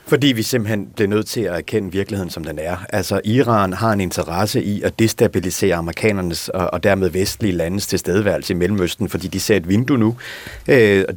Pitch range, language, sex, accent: 100-135 Hz, Danish, male, native